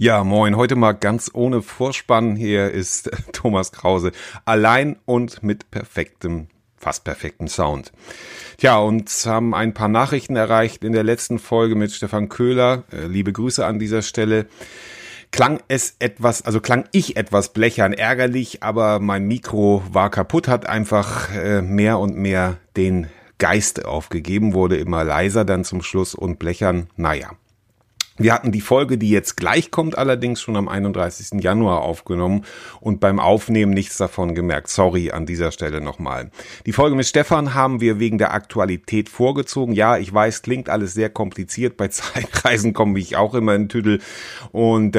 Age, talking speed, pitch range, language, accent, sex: 30-49, 160 wpm, 95-115 Hz, German, German, male